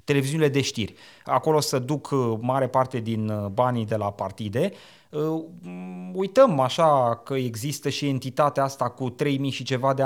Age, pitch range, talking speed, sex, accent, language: 30-49, 115-150 Hz, 175 wpm, male, native, Romanian